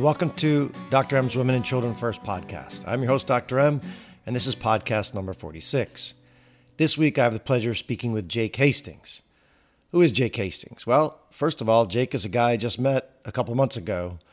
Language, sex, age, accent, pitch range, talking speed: English, male, 40-59, American, 110-140 Hz, 210 wpm